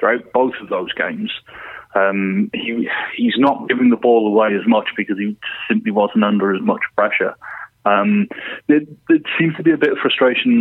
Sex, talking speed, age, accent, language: male, 185 wpm, 30-49, British, English